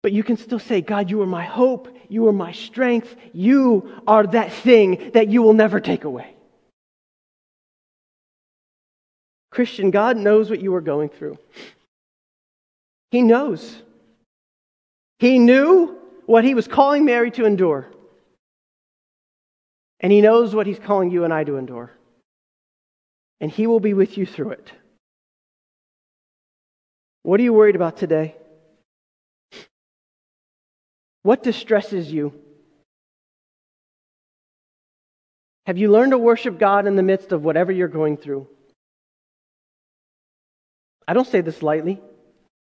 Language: English